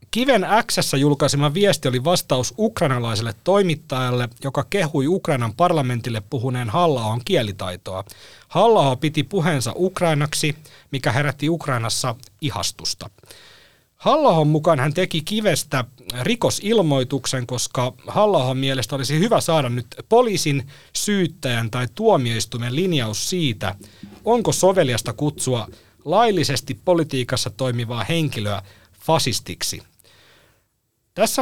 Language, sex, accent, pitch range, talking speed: Finnish, male, native, 120-170 Hz, 100 wpm